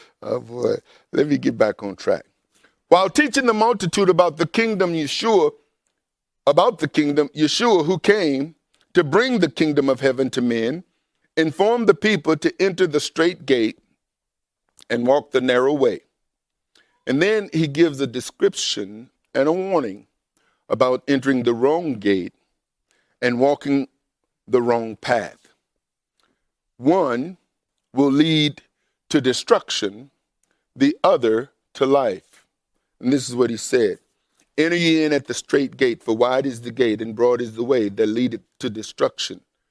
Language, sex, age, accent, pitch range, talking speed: English, male, 50-69, American, 120-165 Hz, 150 wpm